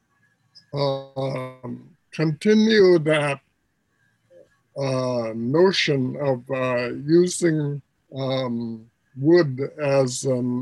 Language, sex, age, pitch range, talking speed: English, male, 60-79, 125-150 Hz, 75 wpm